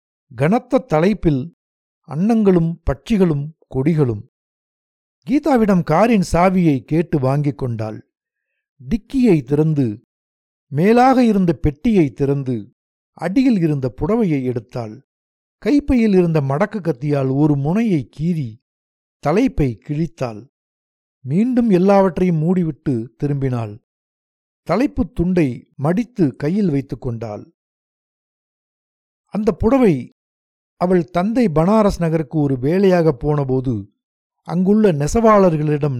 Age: 60-79